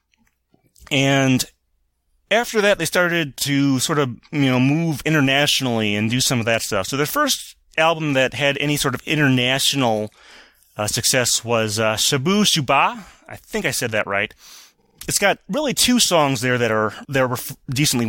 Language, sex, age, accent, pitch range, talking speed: English, male, 30-49, American, 115-150 Hz, 170 wpm